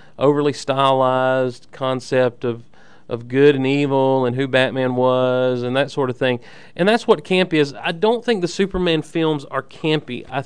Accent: American